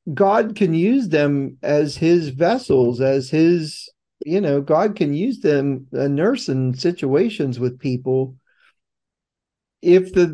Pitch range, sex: 145-190 Hz, male